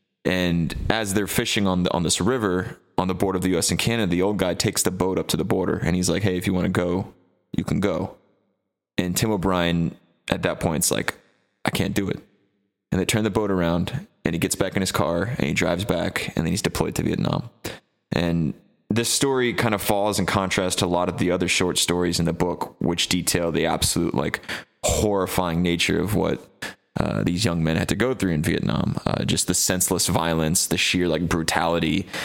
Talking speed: 225 wpm